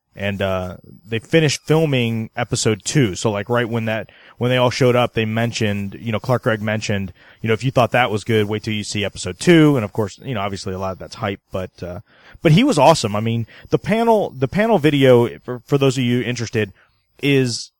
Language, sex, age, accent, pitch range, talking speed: English, male, 30-49, American, 110-130 Hz, 235 wpm